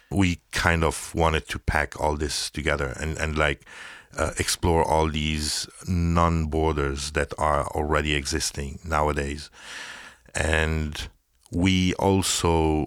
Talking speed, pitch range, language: 115 wpm, 75-85 Hz, English